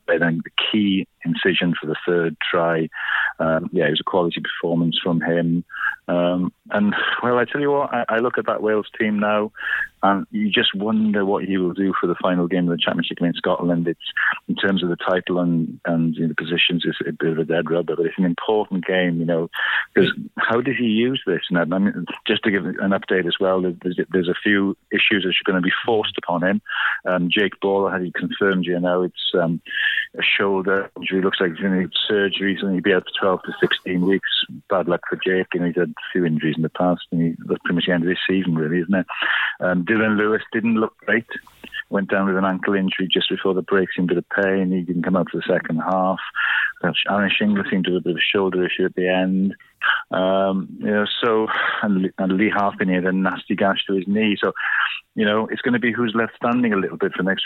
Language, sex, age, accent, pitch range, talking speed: English, male, 40-59, British, 90-105 Hz, 245 wpm